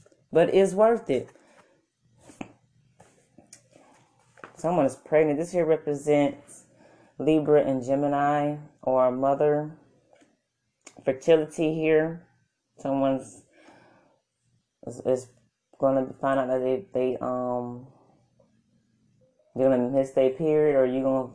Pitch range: 125-150 Hz